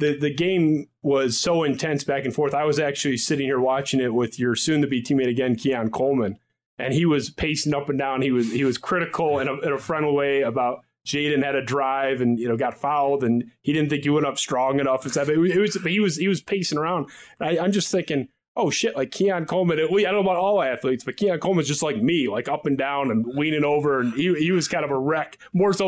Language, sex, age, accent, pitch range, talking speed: English, male, 30-49, American, 125-155 Hz, 260 wpm